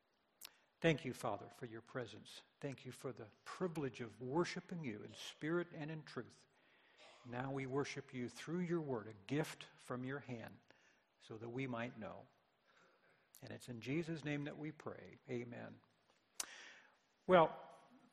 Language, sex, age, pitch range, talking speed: English, male, 60-79, 130-180 Hz, 150 wpm